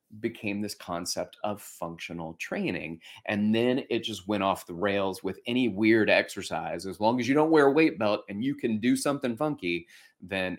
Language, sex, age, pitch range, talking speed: English, male, 30-49, 100-165 Hz, 195 wpm